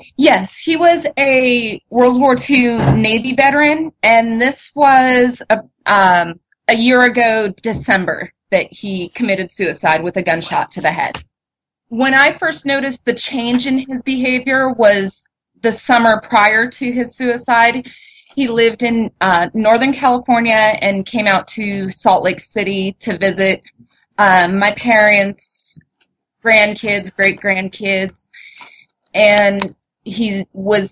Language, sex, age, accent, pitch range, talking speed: English, female, 30-49, American, 185-235 Hz, 130 wpm